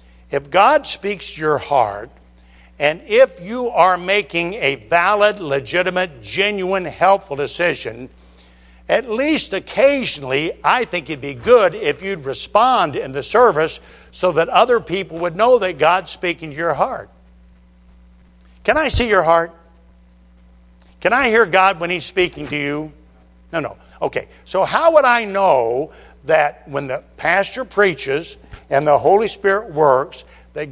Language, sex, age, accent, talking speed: English, male, 60-79, American, 150 wpm